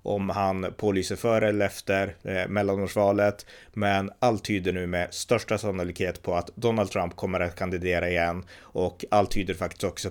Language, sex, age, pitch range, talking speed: Swedish, male, 30-49, 90-110 Hz, 165 wpm